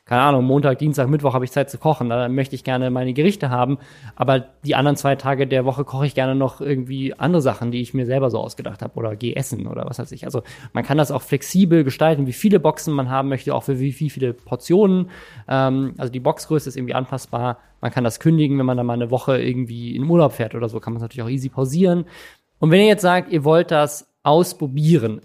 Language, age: German, 20-39